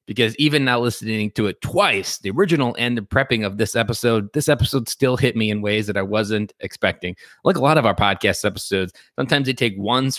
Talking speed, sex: 220 wpm, male